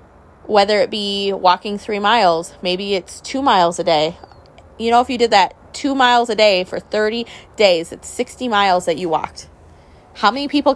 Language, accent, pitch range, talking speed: English, American, 180-230 Hz, 190 wpm